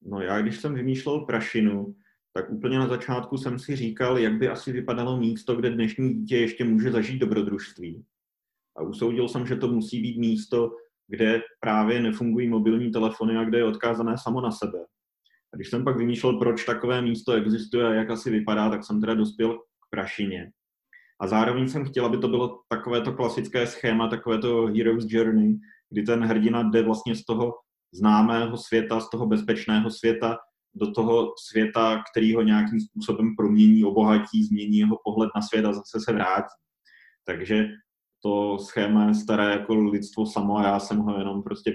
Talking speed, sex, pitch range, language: 175 wpm, male, 105-120 Hz, Slovak